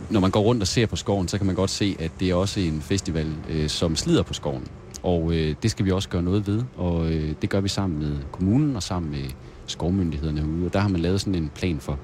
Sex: male